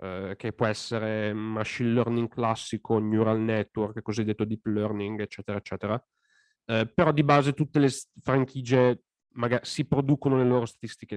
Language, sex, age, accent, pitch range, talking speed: Italian, male, 30-49, native, 110-135 Hz, 135 wpm